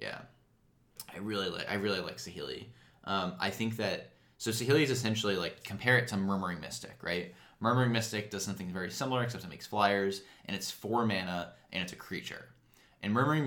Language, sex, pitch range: English, male, 95-120 Hz